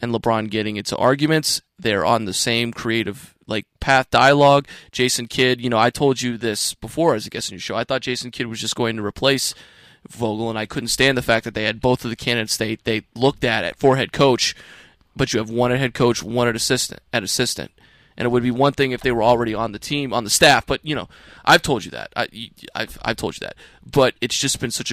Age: 20-39